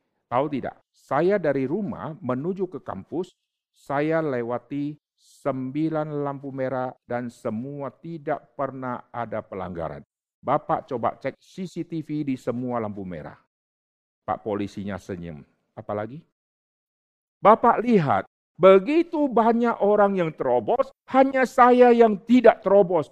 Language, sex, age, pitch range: Indonesian, male, 50-69, 125-205 Hz